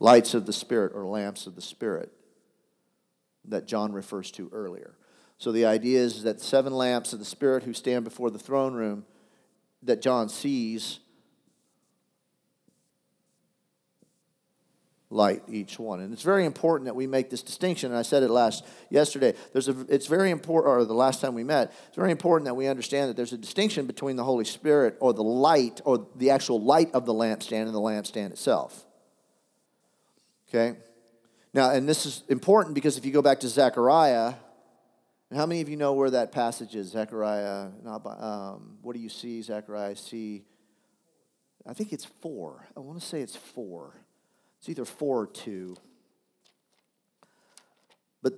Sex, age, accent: male, 50-69, American